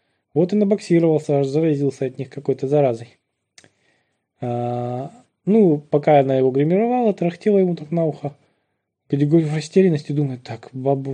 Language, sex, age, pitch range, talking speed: Russian, male, 20-39, 135-165 Hz, 130 wpm